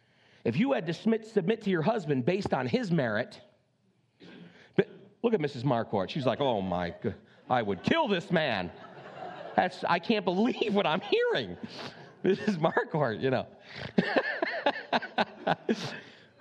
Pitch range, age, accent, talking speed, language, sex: 165-220 Hz, 40-59, American, 140 wpm, English, male